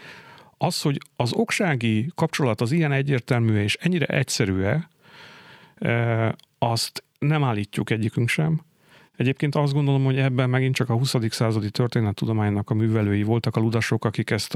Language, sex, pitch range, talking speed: Hungarian, male, 105-130 Hz, 145 wpm